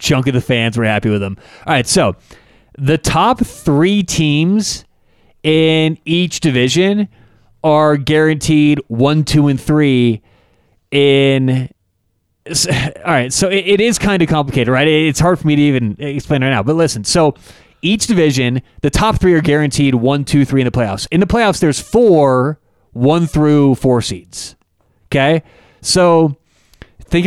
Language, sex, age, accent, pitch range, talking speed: English, male, 30-49, American, 125-165 Hz, 155 wpm